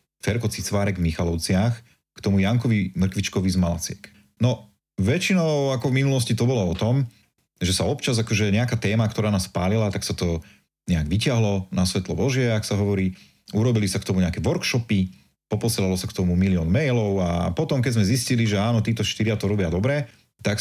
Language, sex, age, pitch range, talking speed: Slovak, male, 30-49, 95-115 Hz, 185 wpm